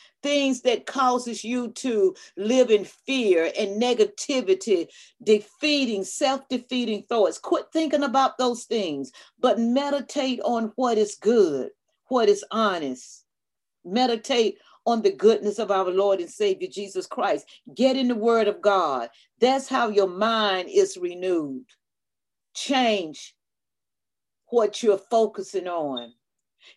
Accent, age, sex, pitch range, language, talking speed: American, 40-59, female, 205-260 Hz, English, 125 wpm